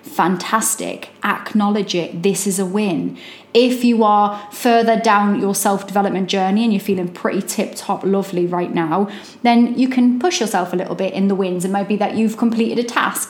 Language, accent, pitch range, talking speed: English, British, 195-235 Hz, 190 wpm